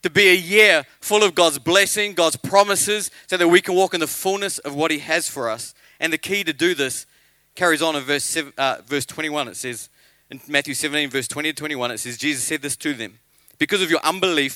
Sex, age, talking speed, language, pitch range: male, 40-59, 240 wpm, English, 150-205 Hz